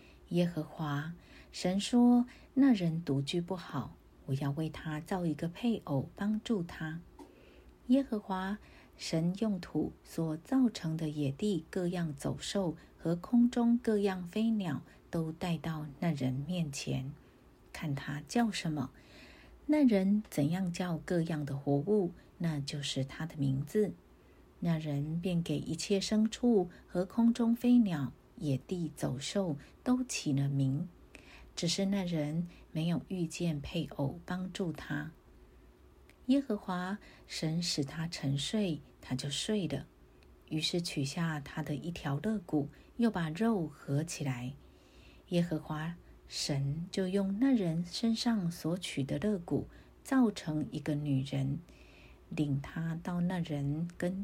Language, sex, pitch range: Chinese, female, 145-195 Hz